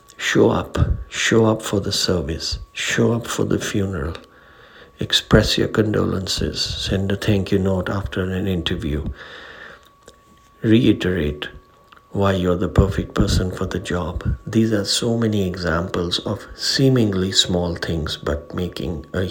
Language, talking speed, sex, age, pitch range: English, 135 wpm, male, 60-79, 85-100 Hz